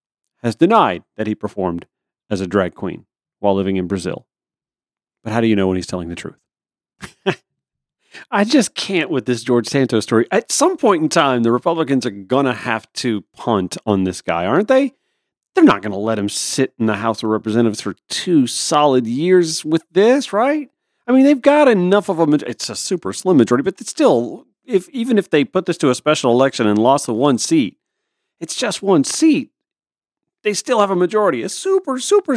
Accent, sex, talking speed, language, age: American, male, 205 wpm, English, 40-59